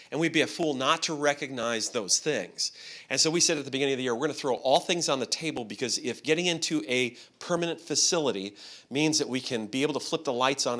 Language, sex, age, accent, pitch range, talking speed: English, male, 40-59, American, 120-155 Hz, 260 wpm